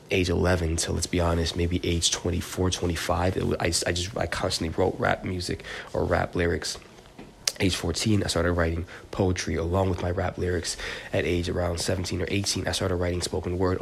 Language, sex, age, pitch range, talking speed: English, male, 20-39, 85-95 Hz, 195 wpm